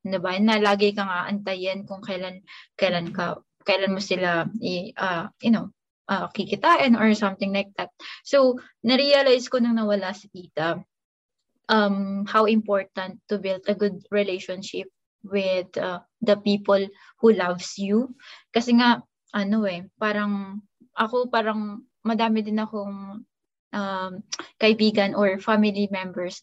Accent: native